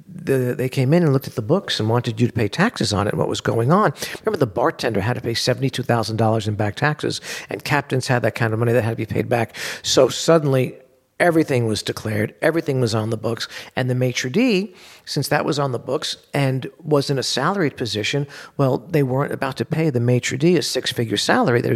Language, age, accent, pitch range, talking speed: English, 50-69, American, 115-145 Hz, 235 wpm